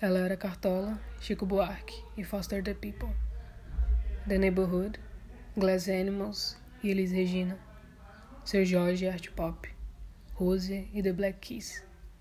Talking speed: 130 wpm